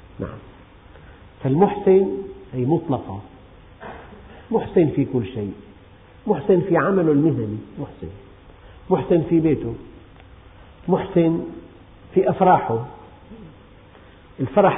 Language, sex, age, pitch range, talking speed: Arabic, male, 50-69, 105-165 Hz, 75 wpm